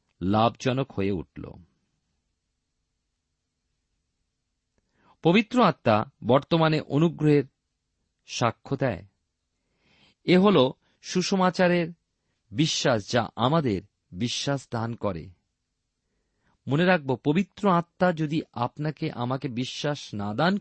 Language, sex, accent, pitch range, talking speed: Bengali, male, native, 105-165 Hz, 60 wpm